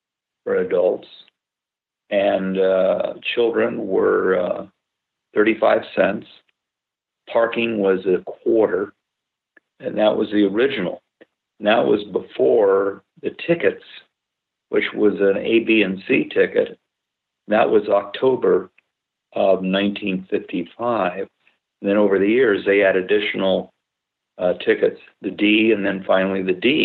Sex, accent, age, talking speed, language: male, American, 50-69, 115 wpm, English